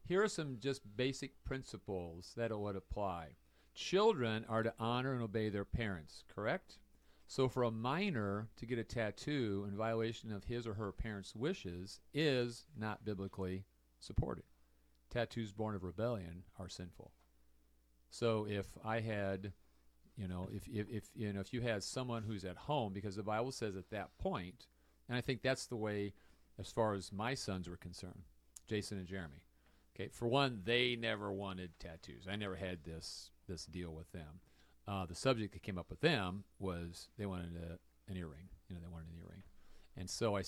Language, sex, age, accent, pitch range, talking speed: English, male, 50-69, American, 85-115 Hz, 180 wpm